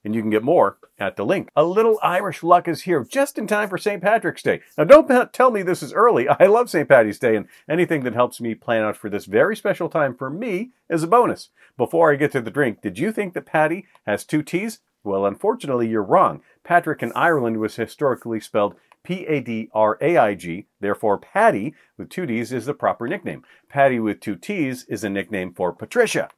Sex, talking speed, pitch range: male, 210 wpm, 110-165 Hz